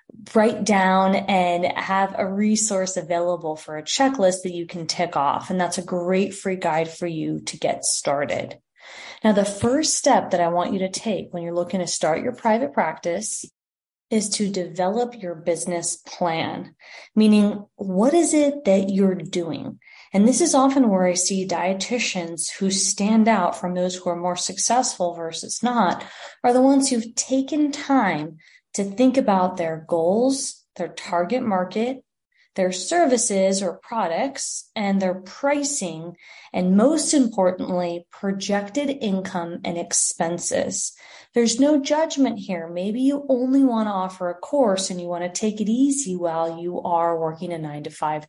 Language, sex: English, female